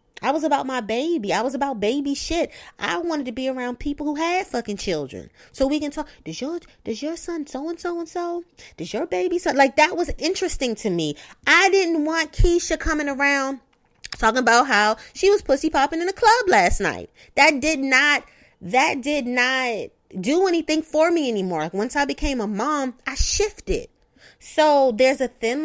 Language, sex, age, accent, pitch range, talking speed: English, female, 30-49, American, 200-290 Hz, 195 wpm